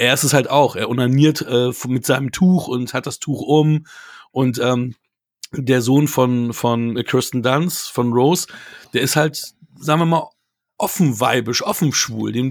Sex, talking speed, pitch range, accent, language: male, 175 wpm, 125-155 Hz, German, German